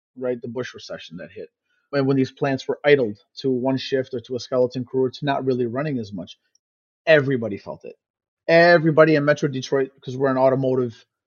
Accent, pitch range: American, 130-155 Hz